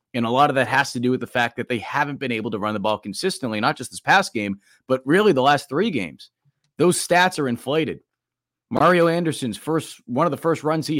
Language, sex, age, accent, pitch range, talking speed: English, male, 30-49, American, 120-155 Hz, 245 wpm